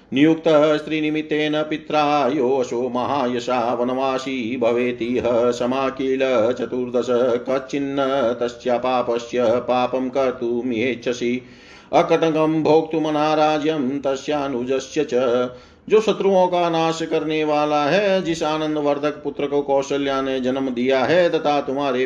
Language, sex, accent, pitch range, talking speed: Hindi, male, native, 125-145 Hz, 105 wpm